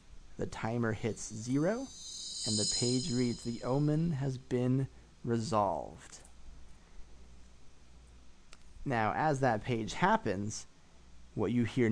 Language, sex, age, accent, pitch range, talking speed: English, male, 30-49, American, 90-130 Hz, 105 wpm